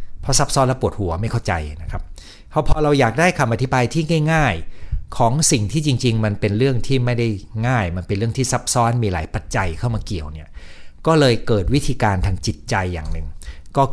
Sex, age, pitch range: male, 60-79, 85-130 Hz